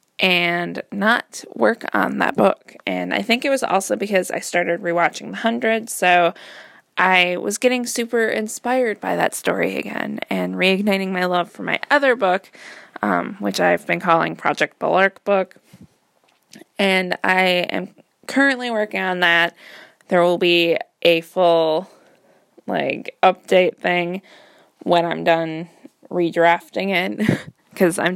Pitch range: 175-230 Hz